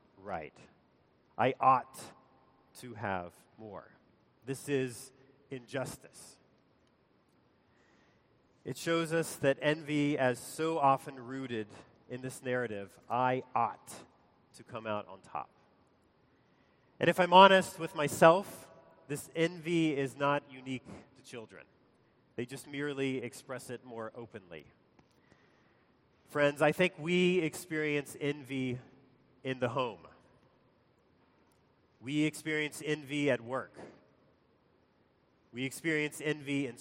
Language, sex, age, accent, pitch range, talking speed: English, male, 30-49, American, 130-155 Hz, 110 wpm